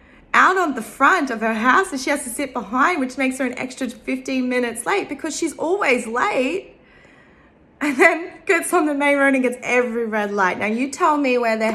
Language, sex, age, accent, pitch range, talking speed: English, female, 20-39, Australian, 190-255 Hz, 220 wpm